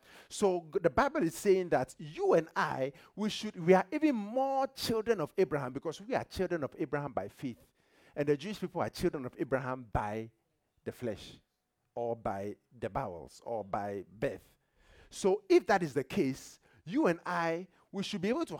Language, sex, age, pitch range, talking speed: English, male, 50-69, 135-210 Hz, 190 wpm